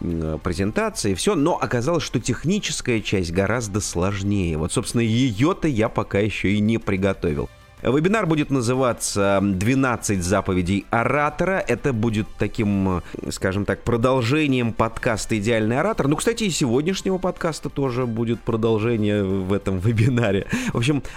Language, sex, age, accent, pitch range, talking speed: Russian, male, 30-49, native, 100-140 Hz, 130 wpm